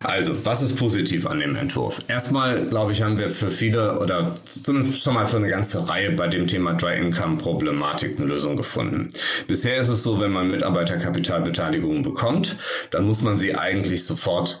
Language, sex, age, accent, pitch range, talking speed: German, male, 40-59, German, 90-115 Hz, 175 wpm